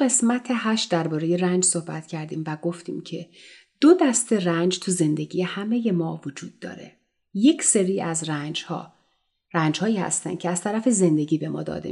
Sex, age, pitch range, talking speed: female, 30-49, 165-220 Hz, 165 wpm